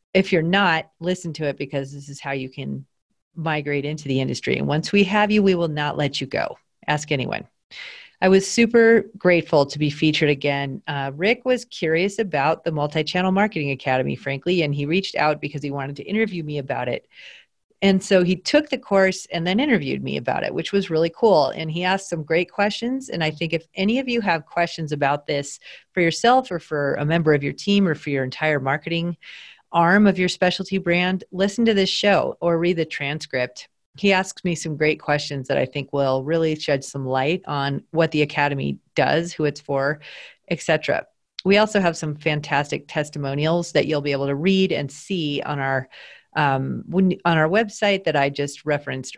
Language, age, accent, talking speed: English, 40-59, American, 205 wpm